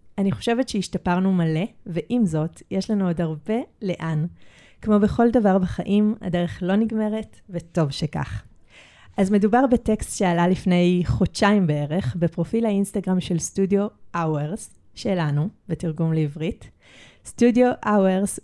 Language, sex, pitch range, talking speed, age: Hebrew, female, 165-210 Hz, 120 wpm, 30-49